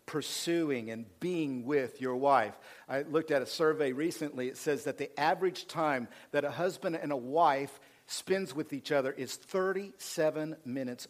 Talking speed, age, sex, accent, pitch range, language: 170 wpm, 50-69, male, American, 125-160 Hz, English